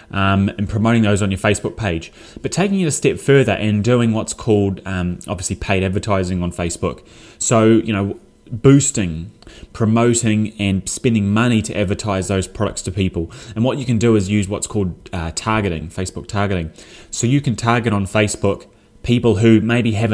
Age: 20-39